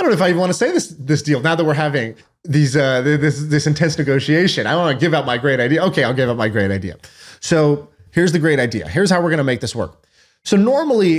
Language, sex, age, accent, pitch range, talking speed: English, male, 30-49, American, 115-160 Hz, 280 wpm